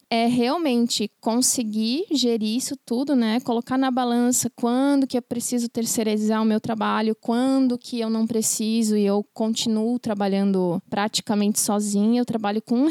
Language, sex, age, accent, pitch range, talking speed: Portuguese, female, 20-39, Brazilian, 225-260 Hz, 155 wpm